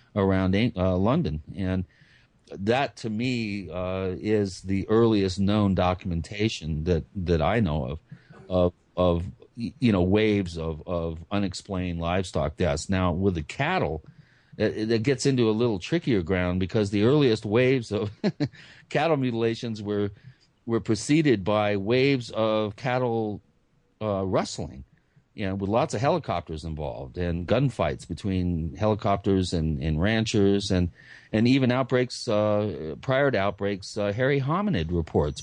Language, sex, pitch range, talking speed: English, male, 90-115 Hz, 140 wpm